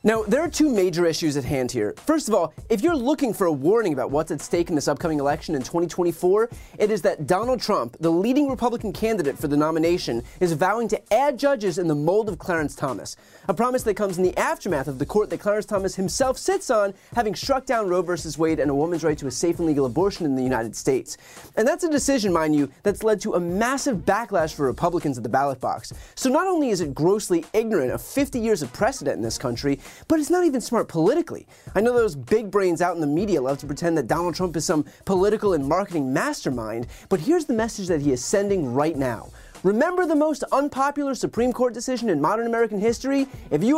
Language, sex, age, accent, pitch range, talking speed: English, male, 30-49, American, 165-260 Hz, 235 wpm